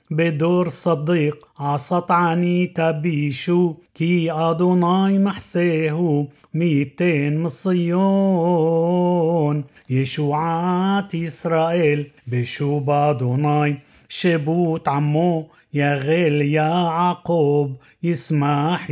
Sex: male